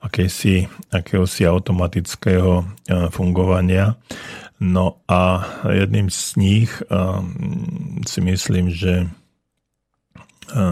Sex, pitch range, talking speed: male, 90-100 Hz, 80 wpm